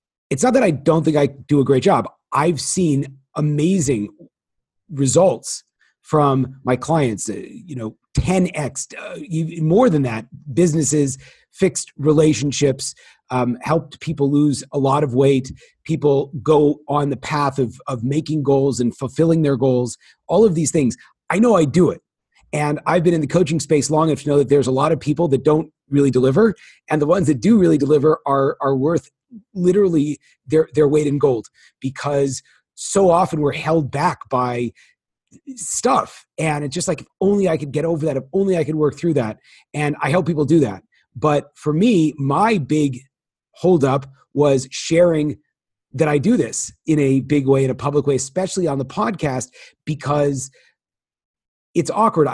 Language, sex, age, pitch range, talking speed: English, male, 40-59, 135-160 Hz, 175 wpm